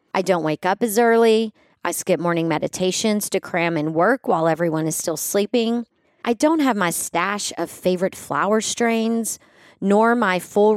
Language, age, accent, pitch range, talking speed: English, 30-49, American, 185-255 Hz, 175 wpm